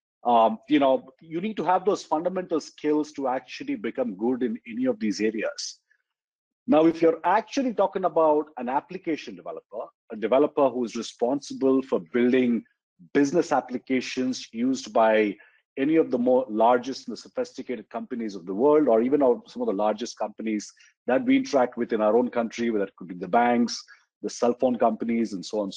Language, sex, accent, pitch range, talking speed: English, male, Indian, 115-165 Hz, 180 wpm